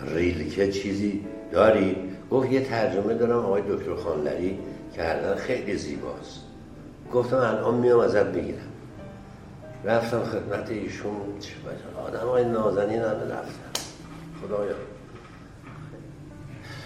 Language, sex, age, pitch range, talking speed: Persian, male, 60-79, 100-130 Hz, 105 wpm